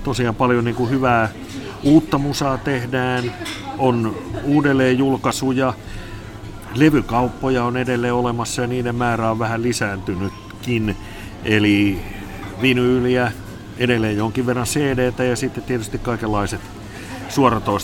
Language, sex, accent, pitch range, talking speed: Finnish, male, native, 100-125 Hz, 105 wpm